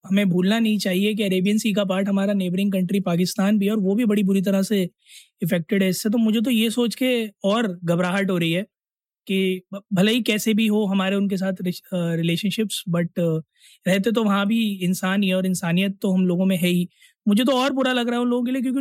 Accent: native